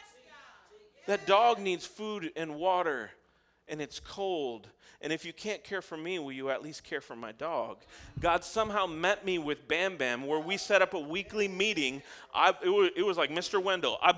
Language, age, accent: English, 40-59, American